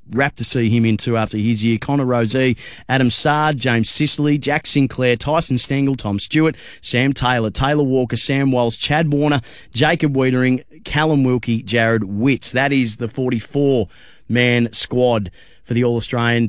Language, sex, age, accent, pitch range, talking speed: English, male, 30-49, Australian, 115-140 Hz, 155 wpm